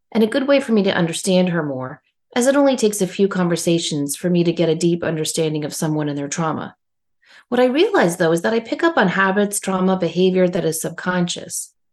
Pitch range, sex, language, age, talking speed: 160-195 Hz, female, English, 30-49, 225 wpm